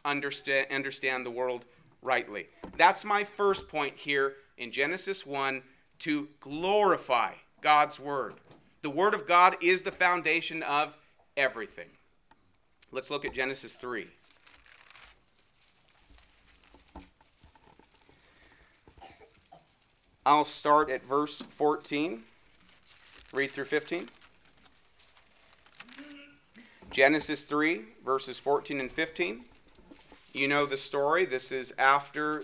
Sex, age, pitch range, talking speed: male, 40-59, 135-165 Hz, 95 wpm